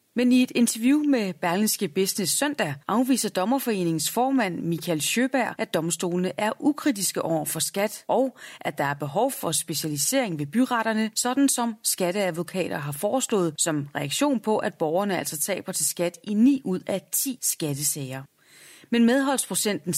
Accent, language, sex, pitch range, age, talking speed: native, Danish, female, 160-225 Hz, 30-49, 155 wpm